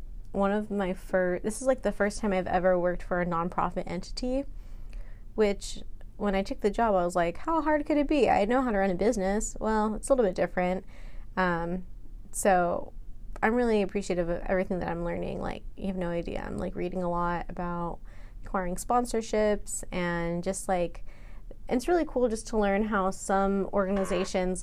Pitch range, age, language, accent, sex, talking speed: 185-225 Hz, 20-39, English, American, female, 190 wpm